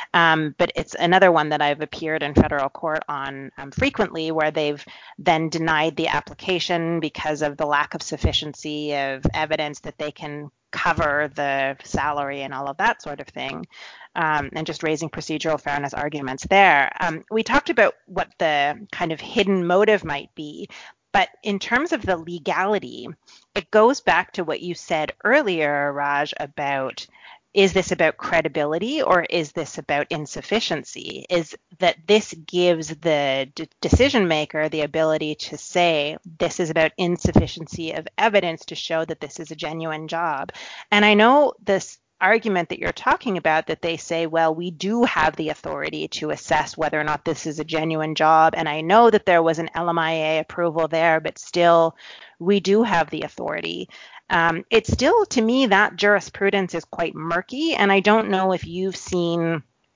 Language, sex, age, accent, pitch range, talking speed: English, female, 30-49, American, 150-185 Hz, 175 wpm